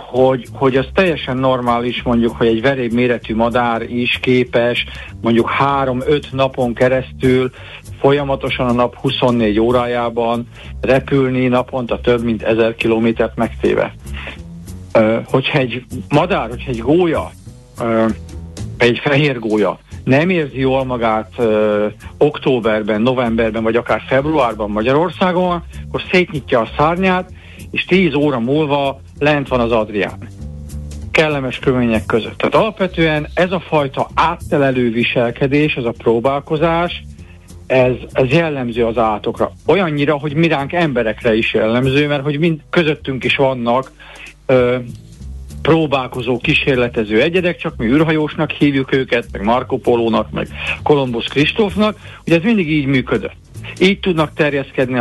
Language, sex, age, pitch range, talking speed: Hungarian, male, 50-69, 115-145 Hz, 125 wpm